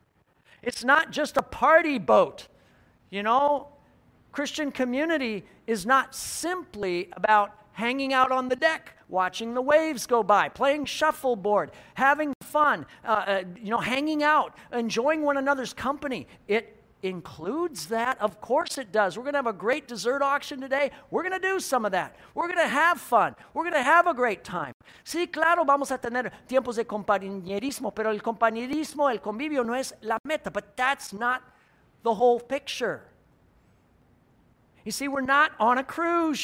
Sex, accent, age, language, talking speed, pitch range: male, American, 50-69, English, 170 wpm, 230-300 Hz